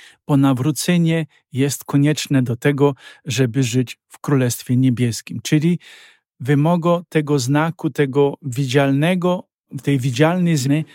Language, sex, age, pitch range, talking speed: Polish, male, 50-69, 130-155 Hz, 110 wpm